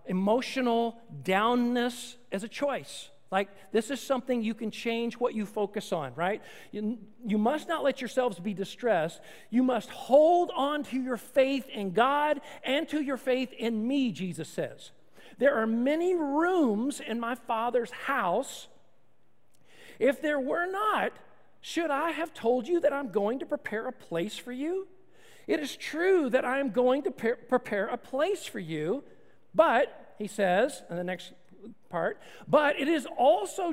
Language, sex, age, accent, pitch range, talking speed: English, male, 40-59, American, 220-285 Hz, 165 wpm